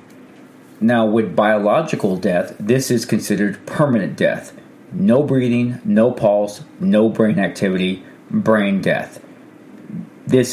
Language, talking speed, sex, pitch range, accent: English, 110 wpm, male, 100-120 Hz, American